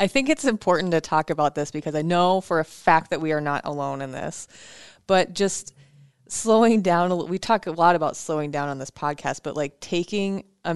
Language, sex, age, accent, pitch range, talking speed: English, female, 20-39, American, 150-195 Hz, 220 wpm